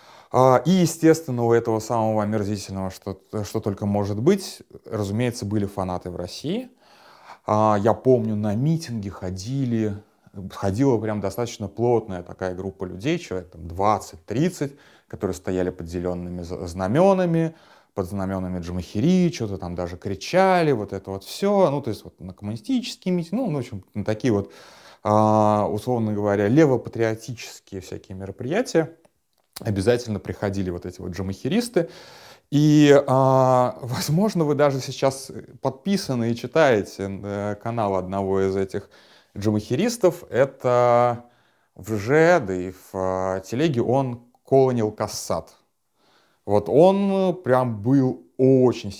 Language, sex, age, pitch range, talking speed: Russian, male, 30-49, 95-135 Hz, 115 wpm